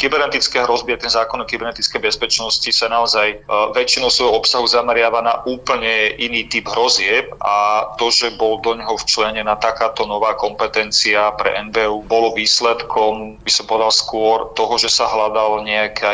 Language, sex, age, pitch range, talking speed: Slovak, male, 30-49, 105-115 Hz, 155 wpm